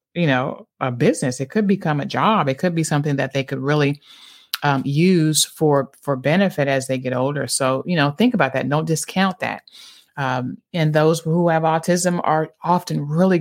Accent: American